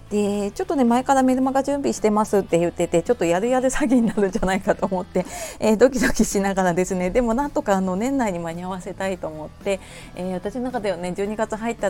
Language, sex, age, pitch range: Japanese, female, 30-49, 170-230 Hz